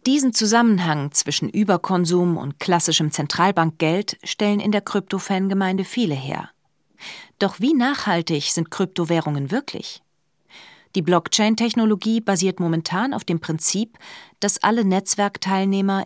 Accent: German